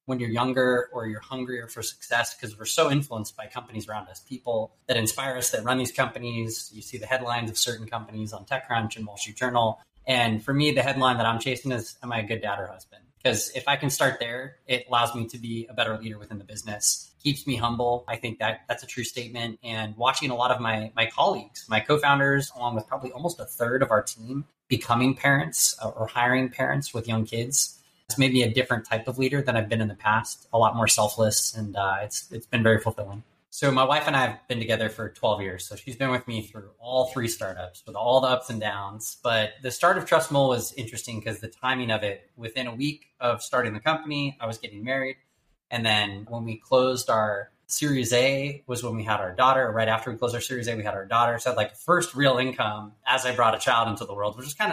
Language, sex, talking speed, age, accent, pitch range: English, male, 245 wpm, 20-39, American, 110-130 Hz